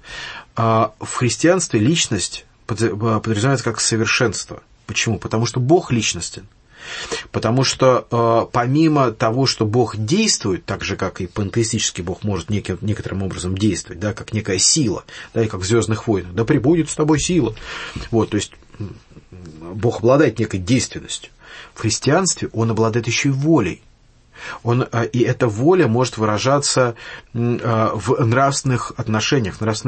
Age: 30-49